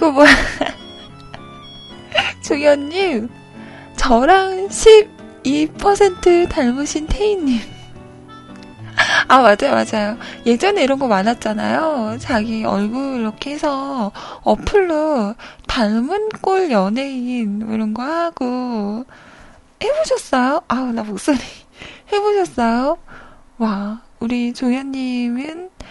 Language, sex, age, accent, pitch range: Korean, female, 20-39, native, 210-310 Hz